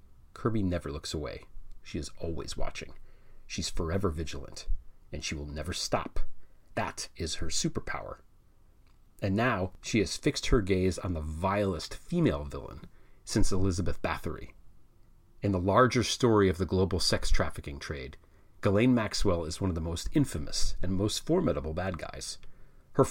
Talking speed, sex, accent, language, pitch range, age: 155 wpm, male, American, English, 80-105 Hz, 40-59